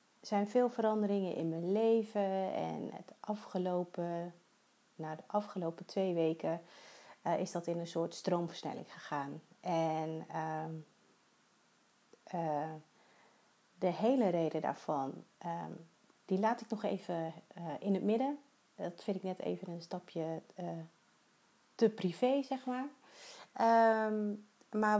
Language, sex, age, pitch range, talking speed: Dutch, female, 30-49, 165-210 Hz, 120 wpm